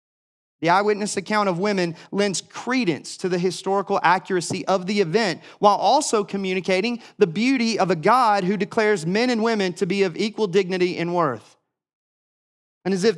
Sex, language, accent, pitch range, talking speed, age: male, English, American, 180-220 Hz, 170 wpm, 30-49